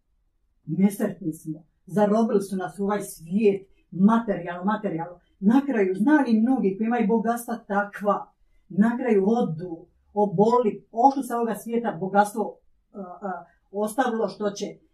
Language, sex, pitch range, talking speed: Croatian, female, 180-230 Hz, 130 wpm